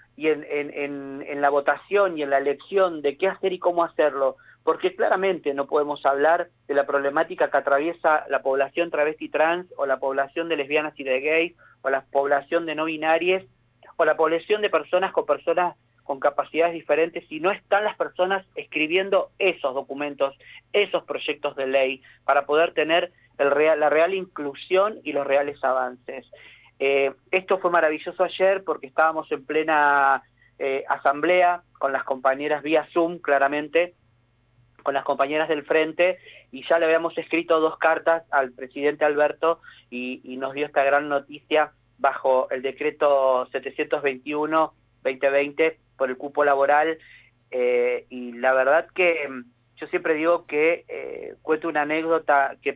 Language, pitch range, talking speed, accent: Spanish, 140-170 Hz, 160 wpm, Argentinian